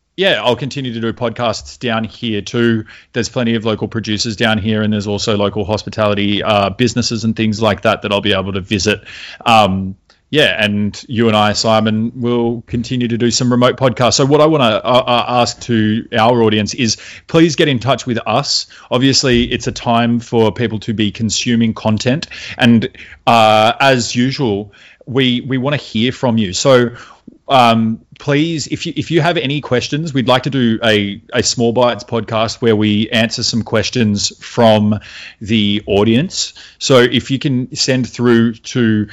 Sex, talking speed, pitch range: male, 180 wpm, 110-125 Hz